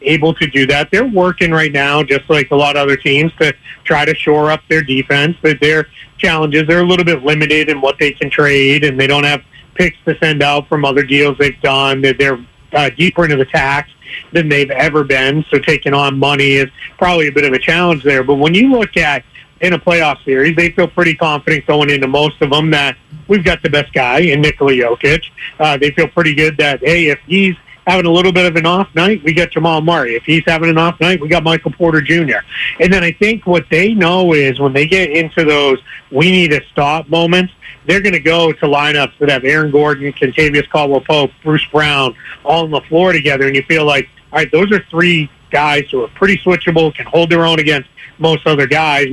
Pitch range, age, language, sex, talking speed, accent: 145-170 Hz, 40-59, English, male, 230 wpm, American